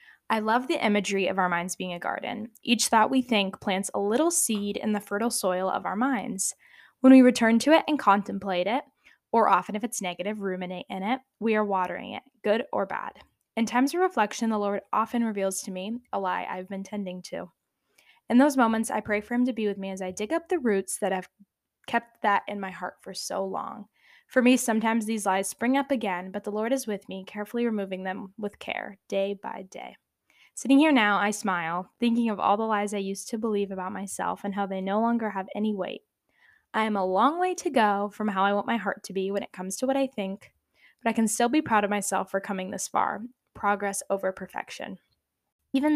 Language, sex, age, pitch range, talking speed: English, female, 10-29, 195-235 Hz, 230 wpm